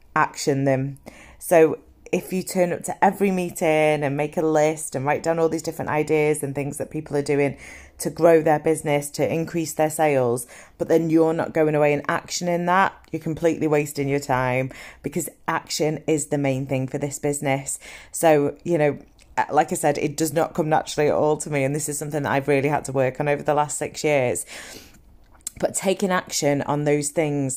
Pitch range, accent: 145-175 Hz, British